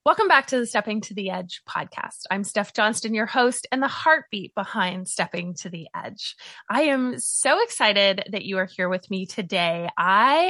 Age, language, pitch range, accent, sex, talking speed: 20-39, English, 180-240 Hz, American, female, 195 wpm